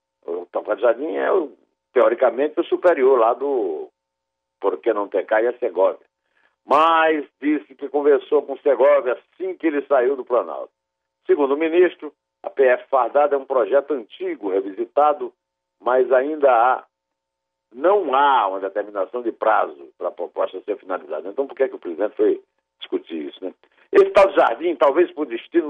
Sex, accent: male, Brazilian